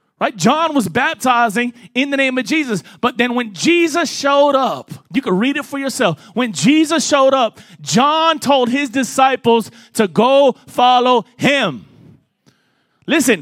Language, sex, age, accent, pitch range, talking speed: English, male, 30-49, American, 205-265 Hz, 150 wpm